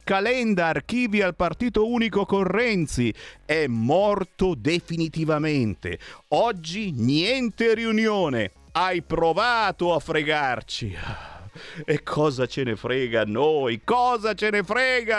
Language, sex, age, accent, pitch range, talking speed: Italian, male, 50-69, native, 140-210 Hz, 110 wpm